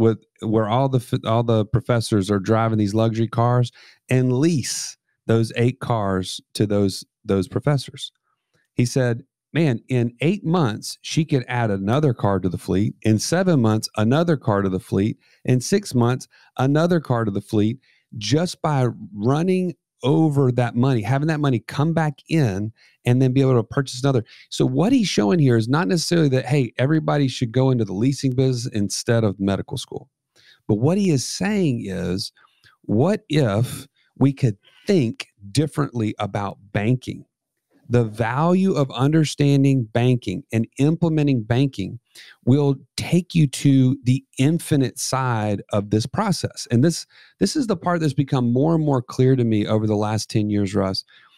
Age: 40-59